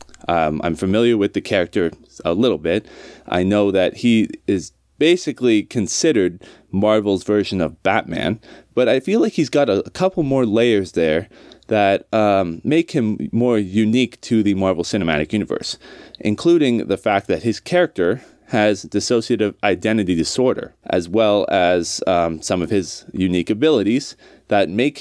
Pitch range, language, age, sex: 95-120 Hz, English, 20-39, male